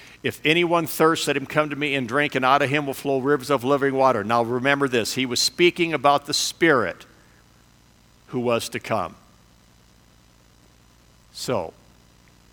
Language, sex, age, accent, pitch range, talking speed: English, male, 50-69, American, 130-160 Hz, 165 wpm